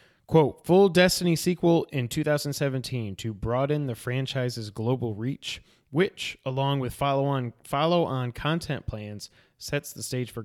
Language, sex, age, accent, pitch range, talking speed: English, male, 20-39, American, 115-145 Hz, 130 wpm